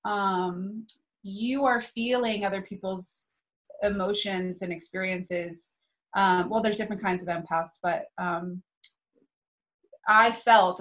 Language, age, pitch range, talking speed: English, 20-39, 185-220 Hz, 110 wpm